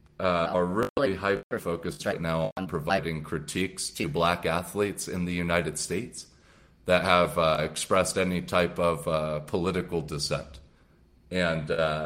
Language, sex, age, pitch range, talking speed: English, male, 30-49, 75-90 Hz, 135 wpm